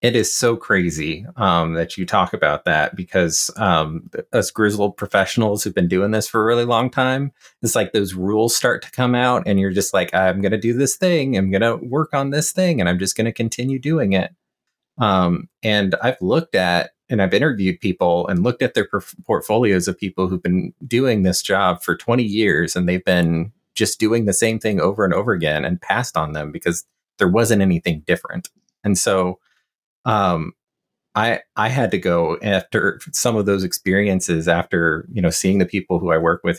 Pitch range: 90-115 Hz